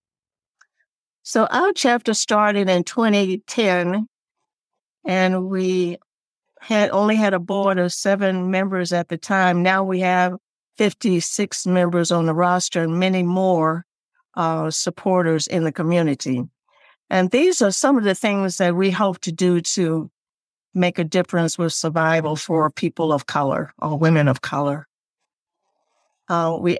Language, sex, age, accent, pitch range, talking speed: English, female, 60-79, American, 170-195 Hz, 140 wpm